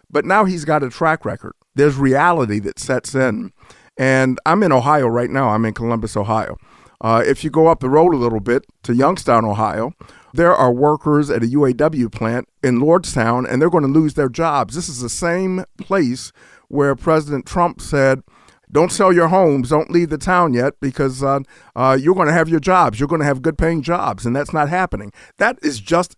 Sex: male